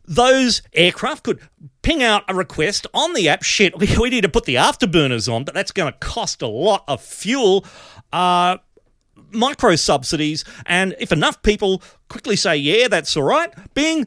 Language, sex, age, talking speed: English, male, 40-59, 170 wpm